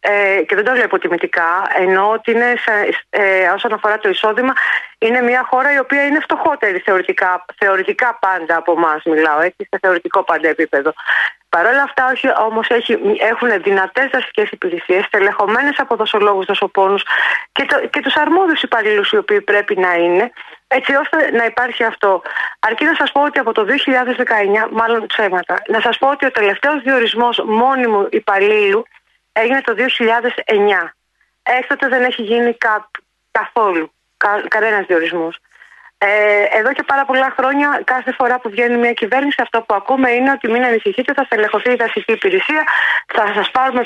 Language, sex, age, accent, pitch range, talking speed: Greek, female, 30-49, native, 205-265 Hz, 160 wpm